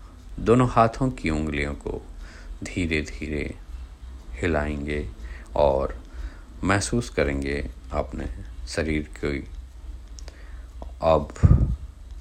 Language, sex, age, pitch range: Hindi, male, 50-69, 75-90 Hz